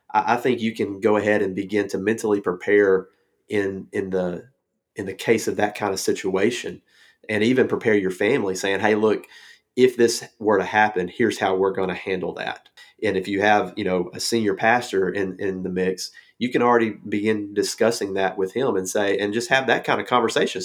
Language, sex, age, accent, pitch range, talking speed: English, male, 30-49, American, 95-105 Hz, 210 wpm